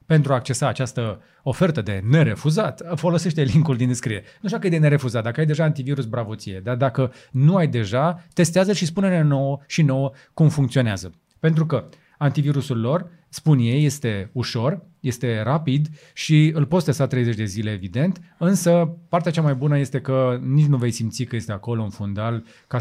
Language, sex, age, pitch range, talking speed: Romanian, male, 30-49, 115-150 Hz, 185 wpm